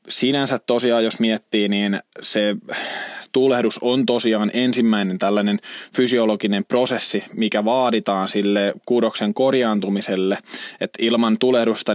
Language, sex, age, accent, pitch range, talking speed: Finnish, male, 20-39, native, 105-120 Hz, 105 wpm